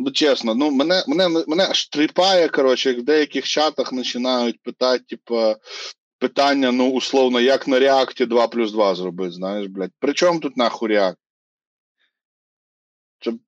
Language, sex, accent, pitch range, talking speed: Ukrainian, male, native, 125-195 Hz, 150 wpm